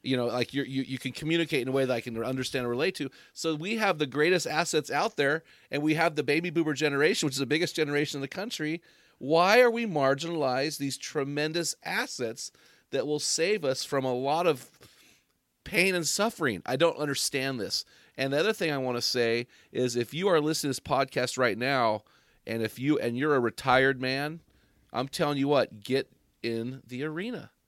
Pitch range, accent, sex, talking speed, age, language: 130-165 Hz, American, male, 210 wpm, 40-59, English